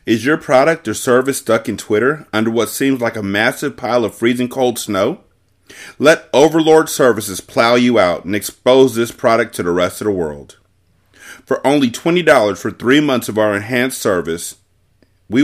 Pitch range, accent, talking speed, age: 95-125 Hz, American, 180 wpm, 30-49